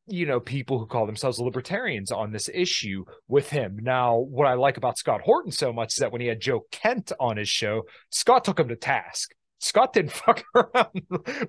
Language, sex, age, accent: English, male, 30-49, American